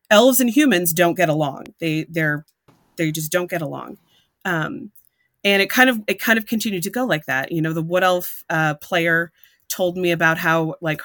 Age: 30-49